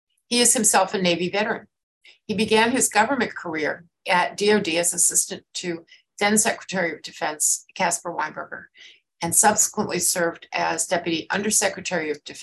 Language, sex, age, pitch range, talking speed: English, female, 60-79, 175-220 Hz, 140 wpm